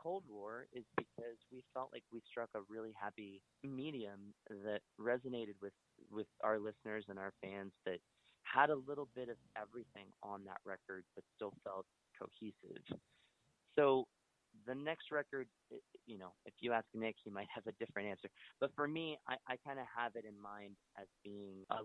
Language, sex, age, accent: English, male, 30-49, American